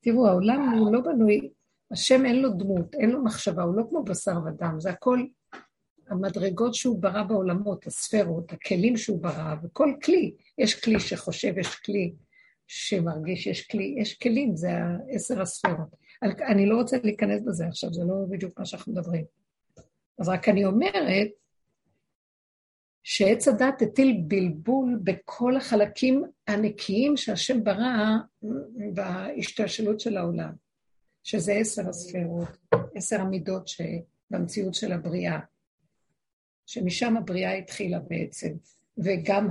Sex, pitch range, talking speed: female, 185-235 Hz, 125 wpm